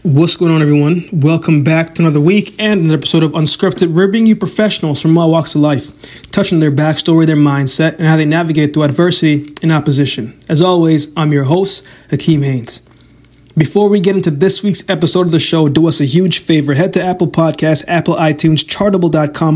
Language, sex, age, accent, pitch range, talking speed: English, male, 20-39, American, 150-185 Hz, 195 wpm